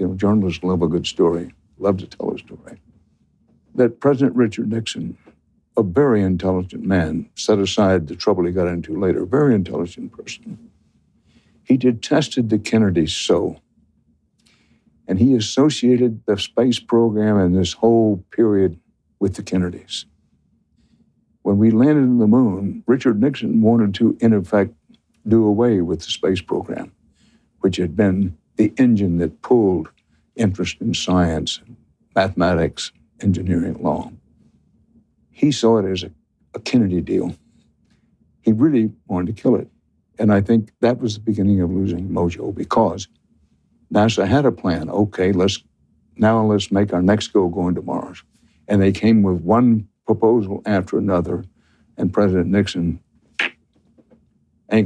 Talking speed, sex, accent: 145 wpm, male, American